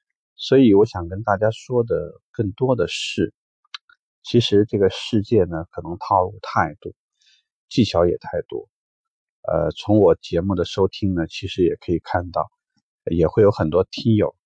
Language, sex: Chinese, male